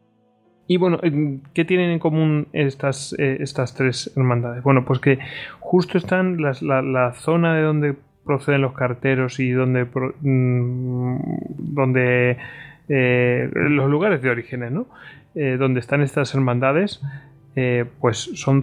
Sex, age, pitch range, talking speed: male, 20-39, 125-145 Hz, 130 wpm